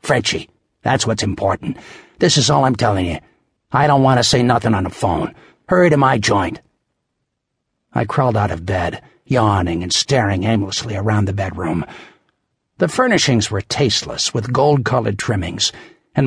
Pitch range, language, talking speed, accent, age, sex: 105-130 Hz, English, 160 wpm, American, 60-79, male